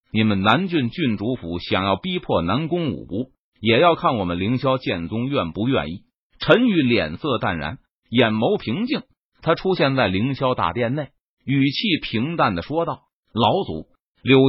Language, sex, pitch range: Chinese, male, 120-170 Hz